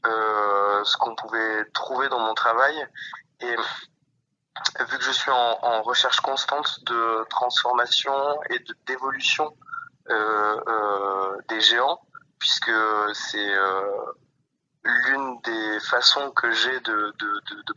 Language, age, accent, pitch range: French, 20-39, French, 100-120 Hz